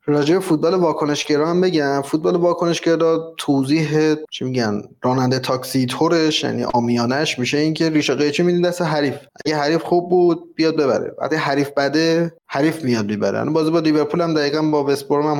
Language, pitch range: Persian, 130-155 Hz